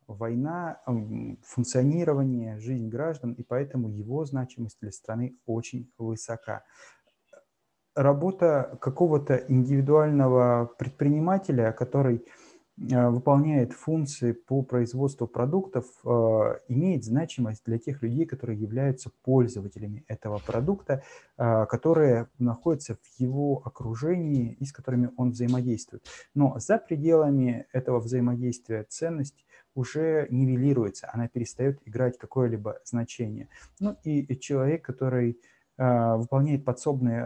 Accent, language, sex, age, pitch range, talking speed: native, Russian, male, 30-49, 120-140 Hz, 100 wpm